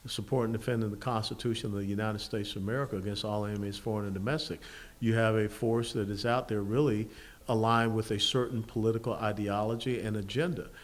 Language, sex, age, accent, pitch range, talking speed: English, male, 50-69, American, 110-145 Hz, 190 wpm